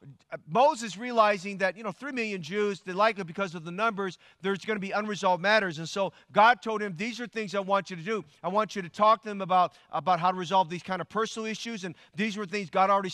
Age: 40-59